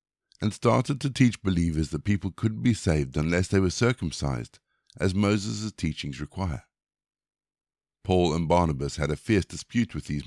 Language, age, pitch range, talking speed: English, 60-79, 75-110 Hz, 160 wpm